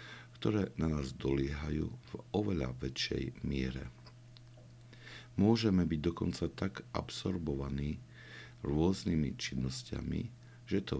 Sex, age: male, 60-79